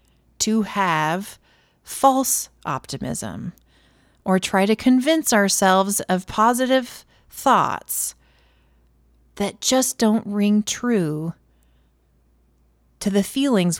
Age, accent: 40-59, American